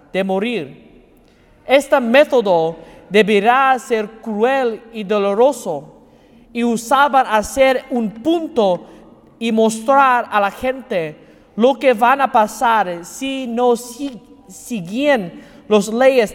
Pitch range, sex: 210-260 Hz, male